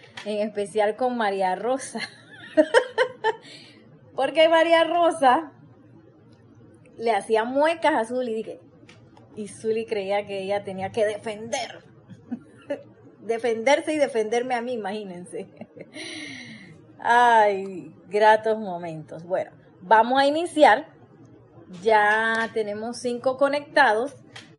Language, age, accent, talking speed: Spanish, 20-39, American, 95 wpm